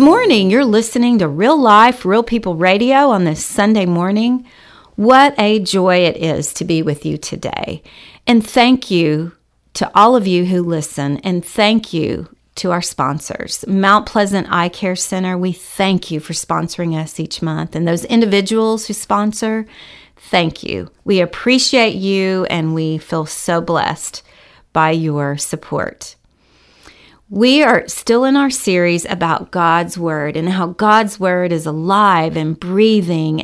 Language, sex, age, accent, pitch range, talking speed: English, female, 40-59, American, 160-210 Hz, 155 wpm